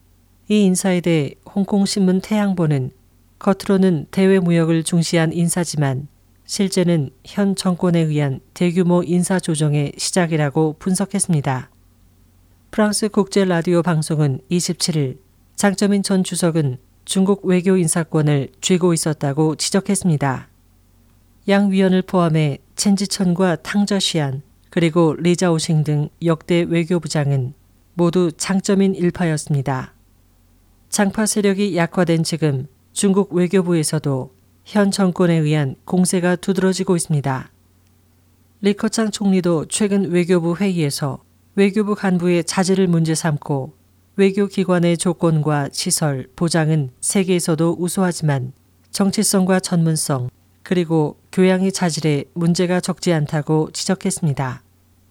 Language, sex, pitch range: Korean, female, 145-190 Hz